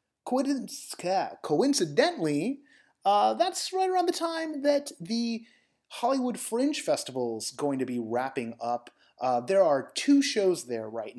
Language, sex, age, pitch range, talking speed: English, male, 30-49, 120-180 Hz, 130 wpm